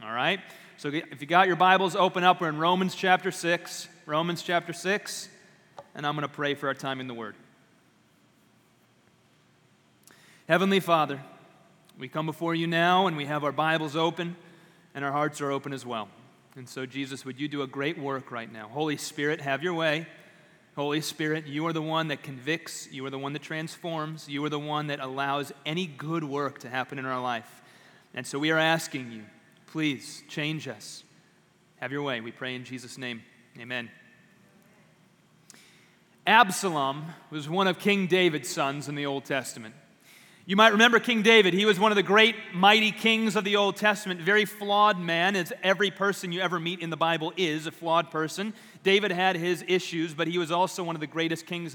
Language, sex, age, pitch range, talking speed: English, male, 30-49, 145-185 Hz, 195 wpm